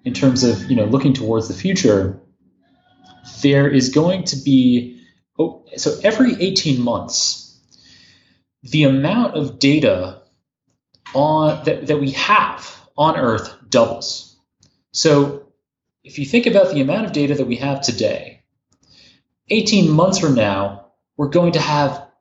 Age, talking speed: 30-49, 140 wpm